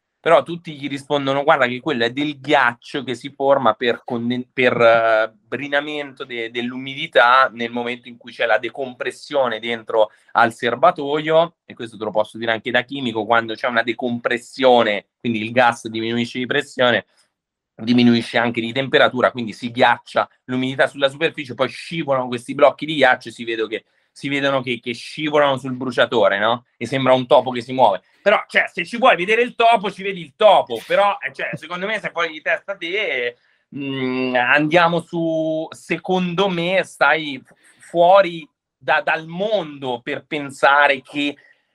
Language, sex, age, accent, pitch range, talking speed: Italian, male, 30-49, native, 120-165 Hz, 165 wpm